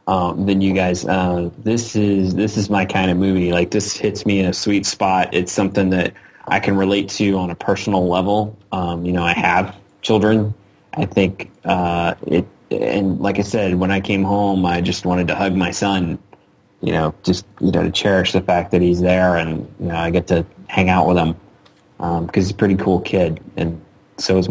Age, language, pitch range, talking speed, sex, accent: 20-39, English, 90-100 Hz, 220 wpm, male, American